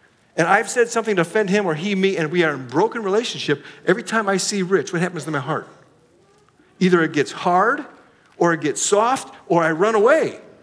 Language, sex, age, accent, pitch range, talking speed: English, male, 50-69, American, 160-205 Hz, 220 wpm